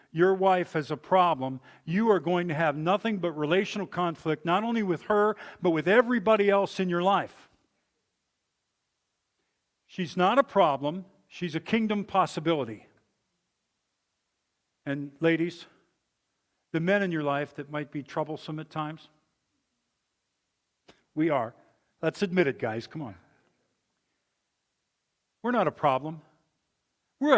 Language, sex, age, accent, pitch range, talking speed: English, male, 50-69, American, 160-210 Hz, 130 wpm